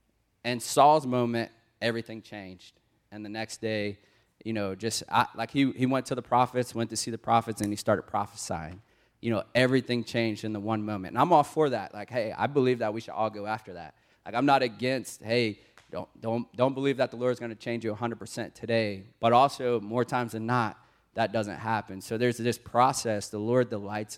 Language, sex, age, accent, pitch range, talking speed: English, male, 30-49, American, 105-120 Hz, 220 wpm